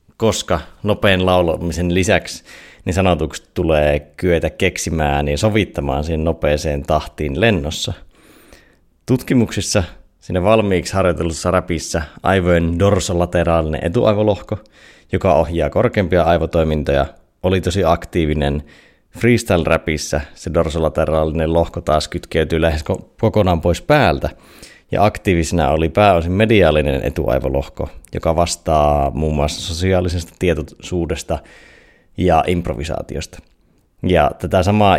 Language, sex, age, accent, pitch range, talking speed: Finnish, male, 30-49, native, 75-95 Hz, 100 wpm